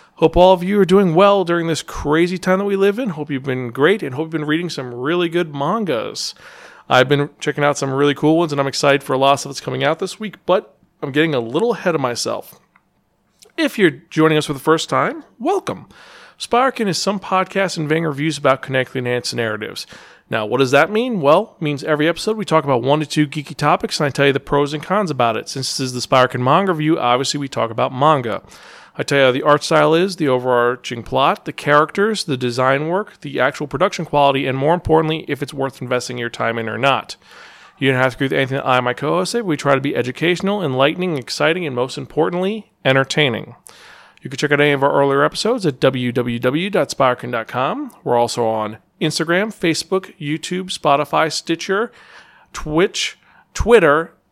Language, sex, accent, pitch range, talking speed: English, male, American, 135-180 Hz, 215 wpm